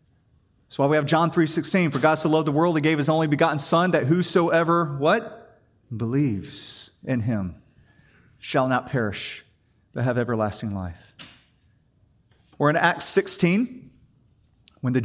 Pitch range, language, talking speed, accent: 130-200 Hz, English, 155 wpm, American